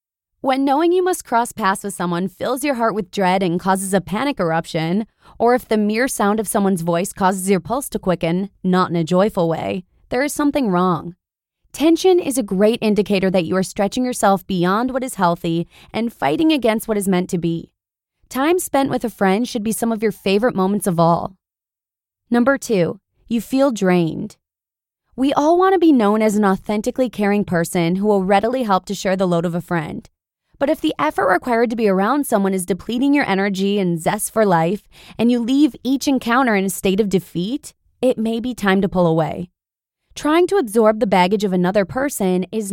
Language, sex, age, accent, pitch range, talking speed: English, female, 20-39, American, 185-250 Hz, 205 wpm